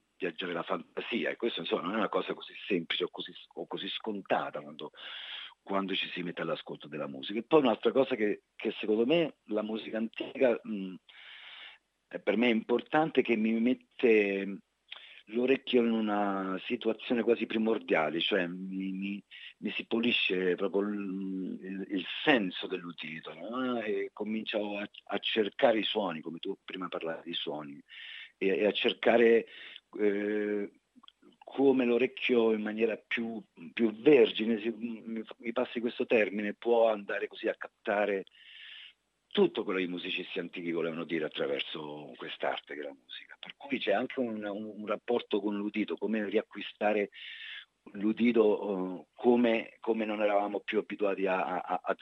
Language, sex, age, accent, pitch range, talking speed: Italian, male, 40-59, native, 95-115 Hz, 150 wpm